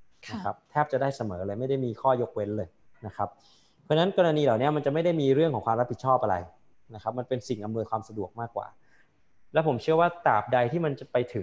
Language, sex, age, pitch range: Thai, male, 20-39, 110-135 Hz